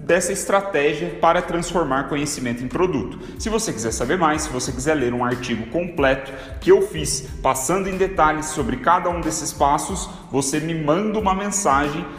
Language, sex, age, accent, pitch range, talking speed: Portuguese, male, 30-49, Brazilian, 140-195 Hz, 170 wpm